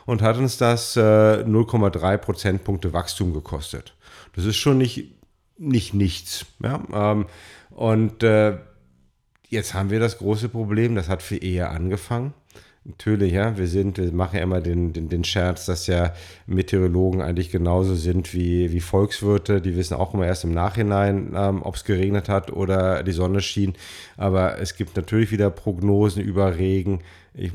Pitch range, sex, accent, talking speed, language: 90-110 Hz, male, German, 155 wpm, German